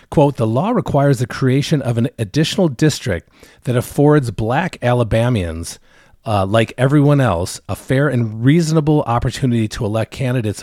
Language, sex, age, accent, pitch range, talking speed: English, male, 40-59, American, 95-135 Hz, 145 wpm